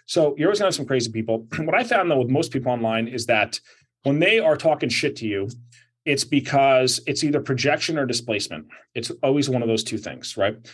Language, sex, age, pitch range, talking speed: English, male, 30-49, 115-145 Hz, 230 wpm